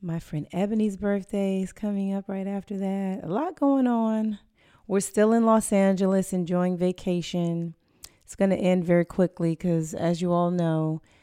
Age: 30-49